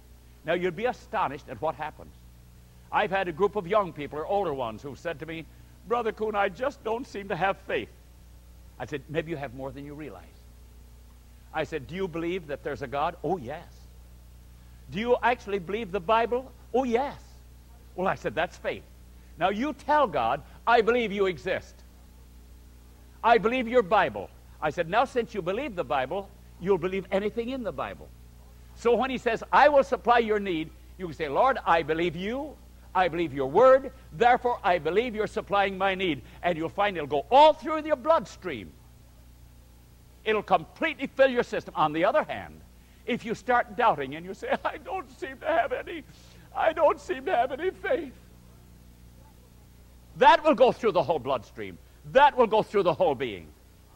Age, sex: 60-79, male